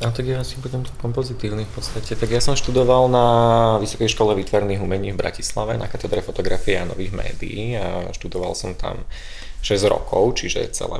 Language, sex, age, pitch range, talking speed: Slovak, male, 20-39, 95-115 Hz, 180 wpm